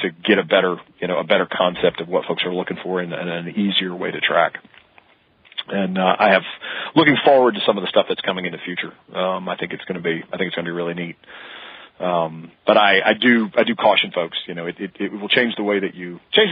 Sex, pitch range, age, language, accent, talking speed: male, 90-100 Hz, 40-59, English, American, 270 wpm